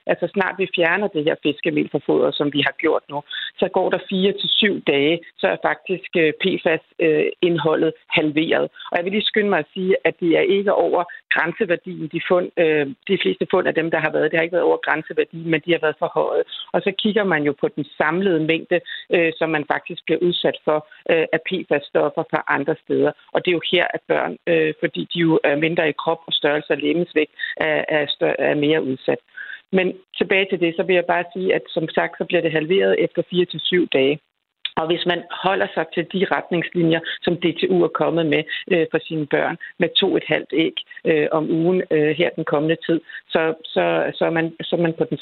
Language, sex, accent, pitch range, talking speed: Danish, female, native, 155-185 Hz, 215 wpm